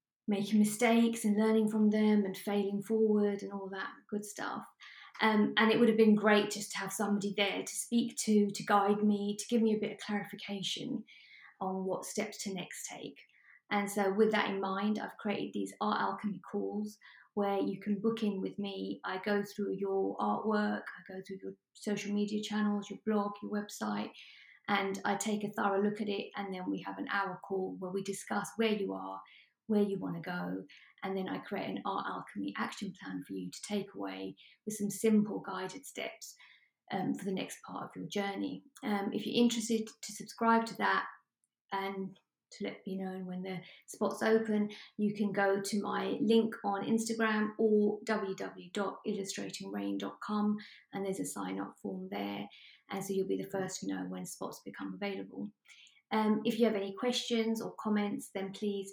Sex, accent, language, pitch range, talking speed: female, British, English, 190-215 Hz, 190 wpm